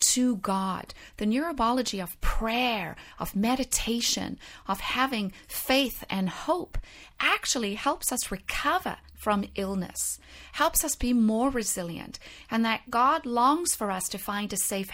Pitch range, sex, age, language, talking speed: 205-295 Hz, female, 30-49, English, 135 wpm